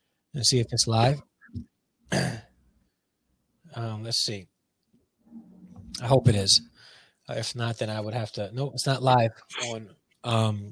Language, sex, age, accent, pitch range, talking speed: English, male, 20-39, American, 110-145 Hz, 140 wpm